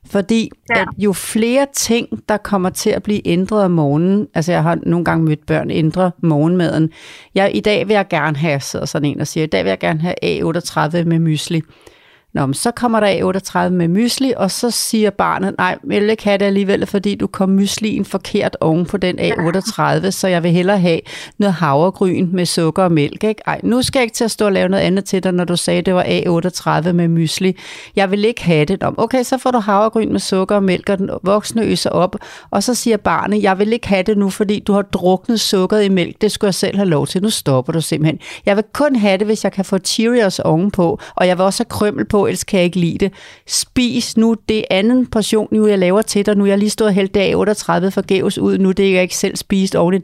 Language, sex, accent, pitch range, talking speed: Danish, female, native, 175-210 Hz, 240 wpm